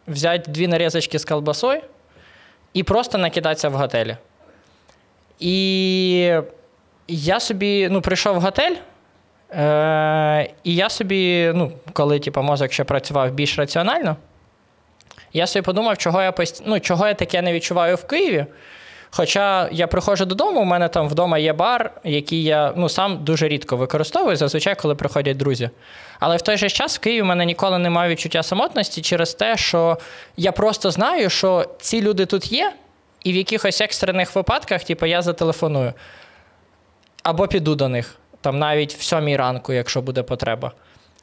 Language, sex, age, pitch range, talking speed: Ukrainian, male, 20-39, 150-195 Hz, 155 wpm